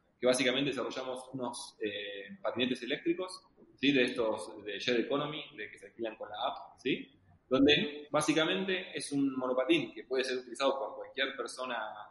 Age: 20-39